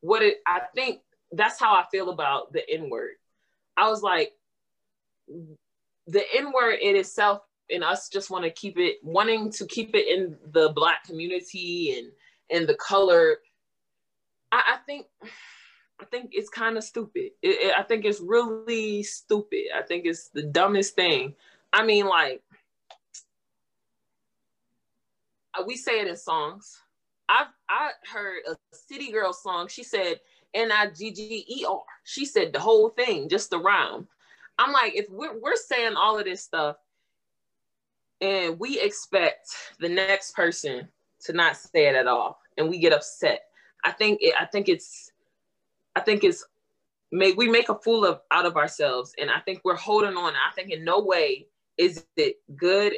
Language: English